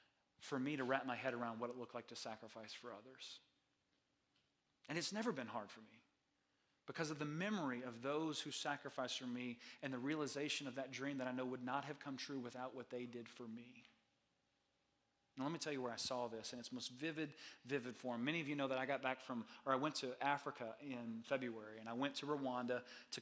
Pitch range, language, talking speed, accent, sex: 130-180 Hz, English, 230 wpm, American, male